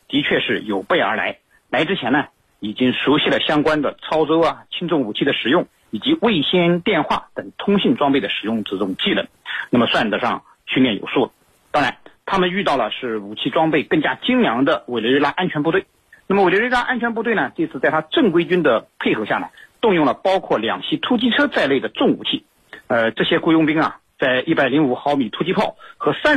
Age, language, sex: 50-69, Chinese, male